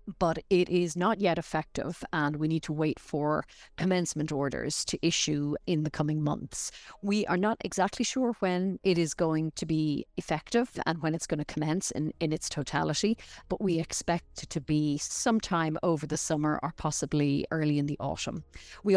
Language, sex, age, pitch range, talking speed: English, female, 40-59, 150-180 Hz, 185 wpm